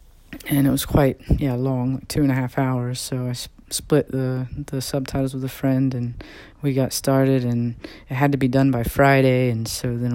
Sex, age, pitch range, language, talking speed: female, 20-39, 125-140 Hz, English, 220 wpm